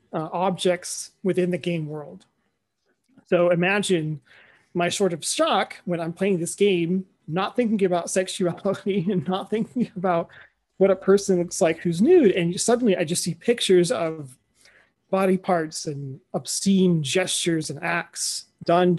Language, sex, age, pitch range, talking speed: English, male, 30-49, 165-195 Hz, 150 wpm